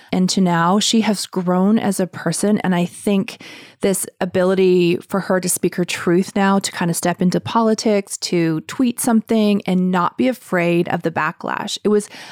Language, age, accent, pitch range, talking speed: English, 30-49, American, 180-220 Hz, 190 wpm